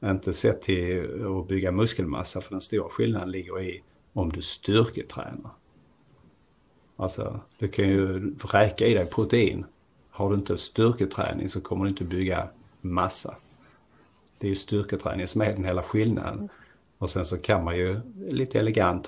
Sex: male